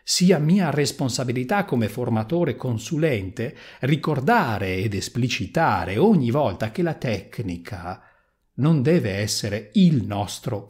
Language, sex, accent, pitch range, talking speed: Italian, male, native, 120-190 Hz, 105 wpm